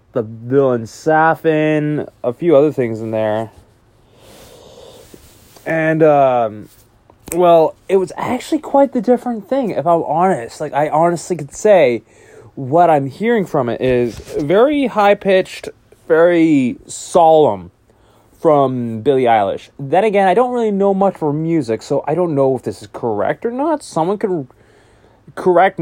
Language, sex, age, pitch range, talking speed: English, male, 20-39, 125-185 Hz, 145 wpm